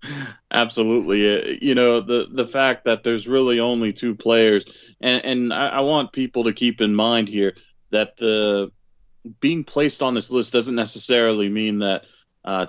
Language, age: English, 20-39